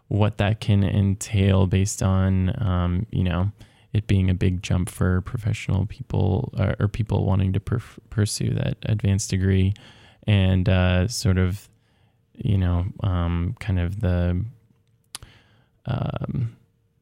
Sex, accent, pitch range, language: male, American, 95-115 Hz, English